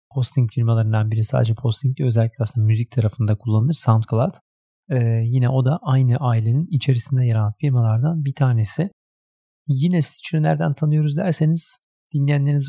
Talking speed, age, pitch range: 130 wpm, 40-59, 115-145 Hz